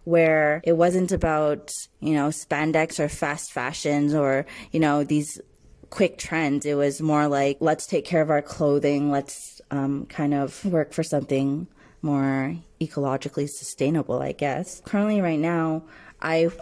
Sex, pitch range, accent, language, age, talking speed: female, 145-165 Hz, American, English, 20-39, 150 wpm